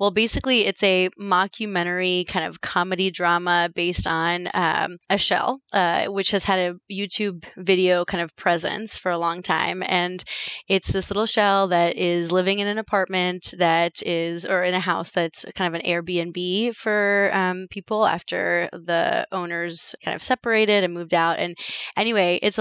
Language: English